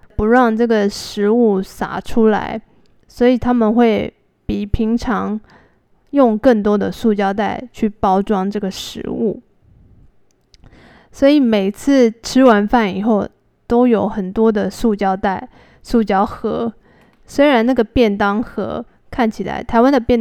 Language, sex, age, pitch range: Chinese, female, 20-39, 200-235 Hz